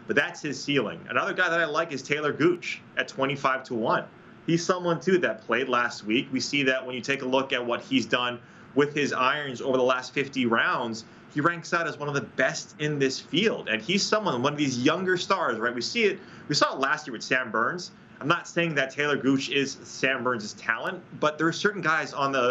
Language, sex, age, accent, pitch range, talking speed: English, male, 30-49, American, 125-155 Hz, 245 wpm